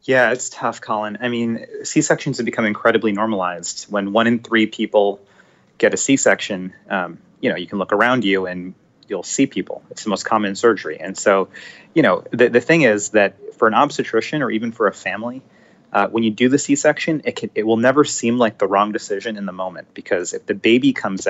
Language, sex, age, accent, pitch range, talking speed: English, male, 30-49, American, 105-125 Hz, 215 wpm